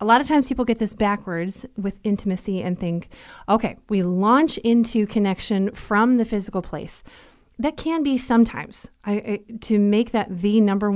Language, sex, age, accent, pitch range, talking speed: English, female, 30-49, American, 190-240 Hz, 165 wpm